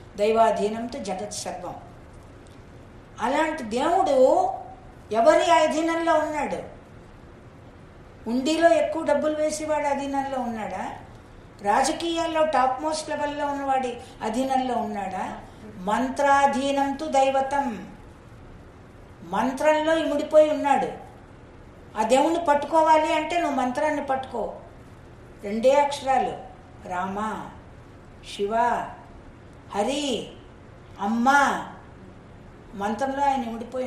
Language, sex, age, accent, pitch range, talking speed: Telugu, female, 50-69, native, 225-305 Hz, 80 wpm